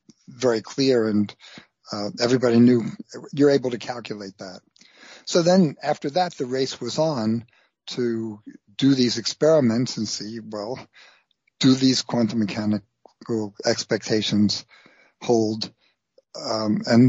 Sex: male